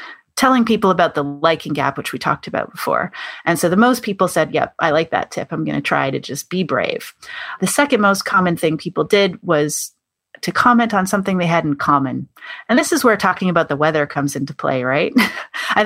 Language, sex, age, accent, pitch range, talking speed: English, female, 30-49, American, 155-215 Hz, 225 wpm